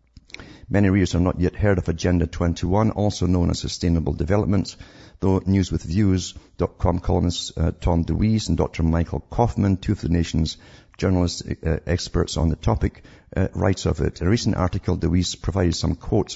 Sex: male